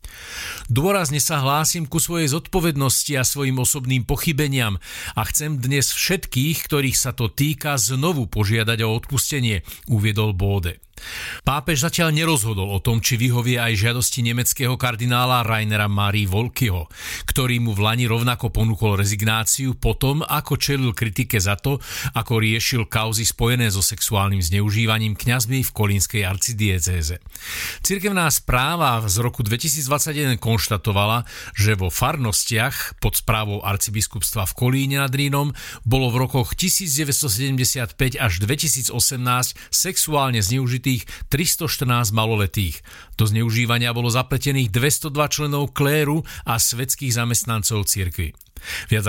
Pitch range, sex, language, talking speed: 105-135 Hz, male, Slovak, 120 wpm